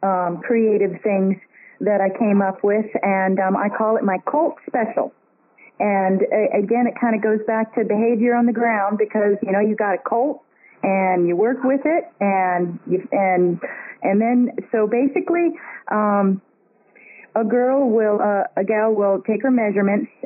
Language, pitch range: English, 190-235 Hz